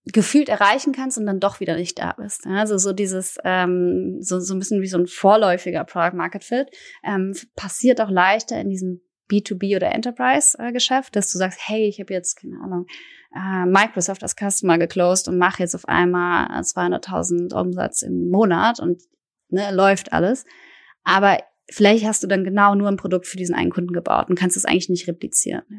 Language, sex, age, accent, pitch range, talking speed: German, female, 20-39, German, 180-210 Hz, 185 wpm